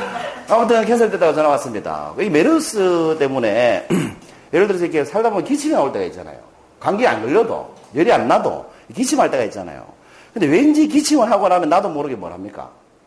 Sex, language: male, Korean